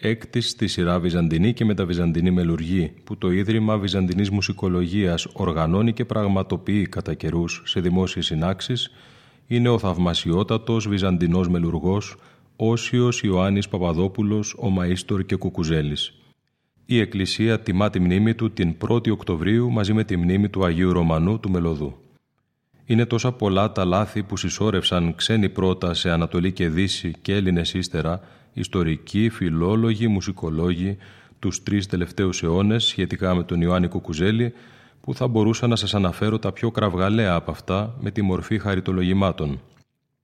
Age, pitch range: 30-49, 90-110 Hz